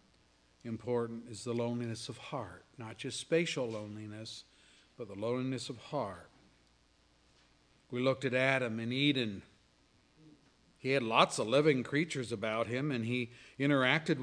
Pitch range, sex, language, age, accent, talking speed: 115-150 Hz, male, English, 50-69, American, 135 wpm